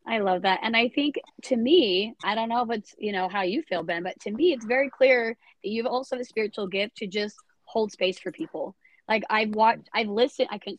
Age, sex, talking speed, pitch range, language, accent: 20-39, female, 245 wpm, 195-235 Hz, English, American